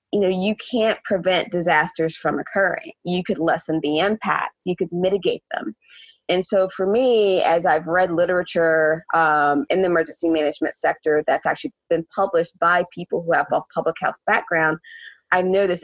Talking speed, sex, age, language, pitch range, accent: 170 wpm, female, 20-39, English, 160-180 Hz, American